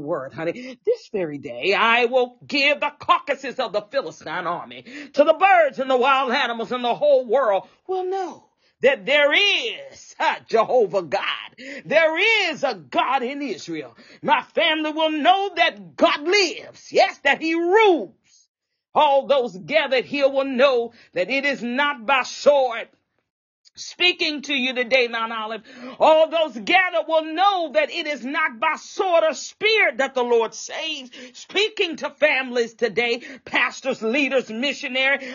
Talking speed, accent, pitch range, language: 155 wpm, American, 250-320 Hz, English